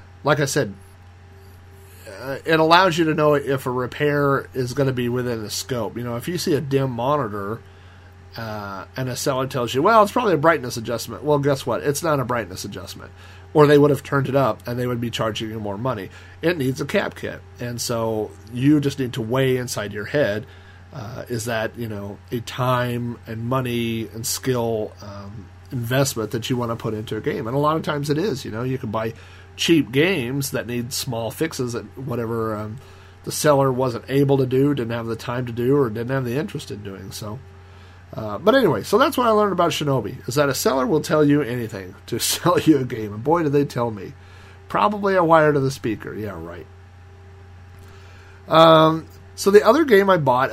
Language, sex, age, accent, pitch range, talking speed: English, male, 40-59, American, 100-140 Hz, 215 wpm